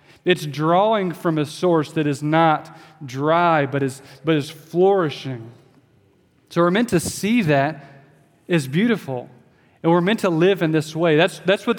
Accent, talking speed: American, 170 wpm